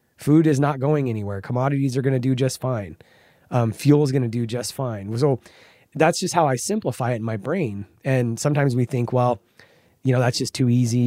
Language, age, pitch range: English, 20-39, 115-145 Hz